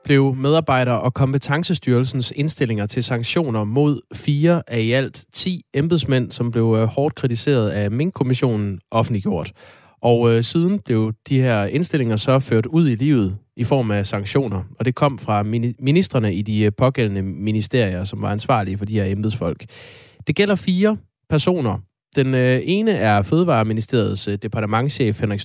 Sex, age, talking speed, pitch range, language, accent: male, 20-39, 160 wpm, 110-145 Hz, Danish, native